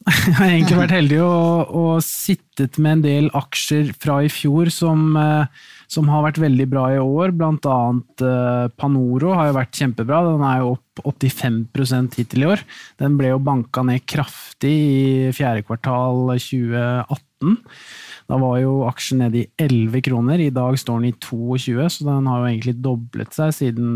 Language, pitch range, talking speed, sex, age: English, 125-155 Hz, 175 wpm, male, 20-39